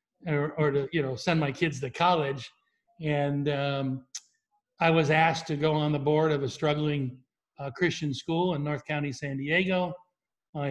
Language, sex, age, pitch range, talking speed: English, male, 60-79, 140-165 Hz, 180 wpm